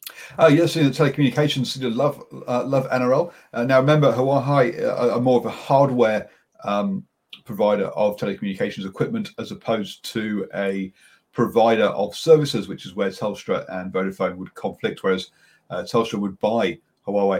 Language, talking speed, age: English, 150 wpm, 40-59